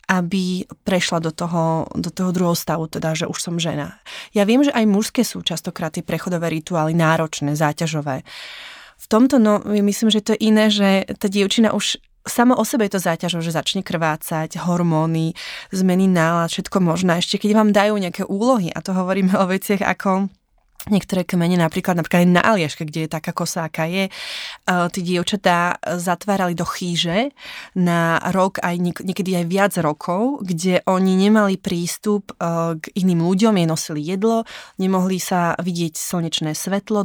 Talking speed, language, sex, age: 165 wpm, Slovak, female, 20-39